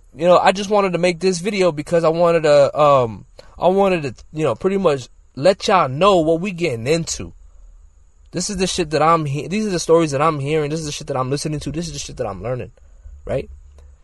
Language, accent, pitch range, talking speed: English, American, 95-150 Hz, 250 wpm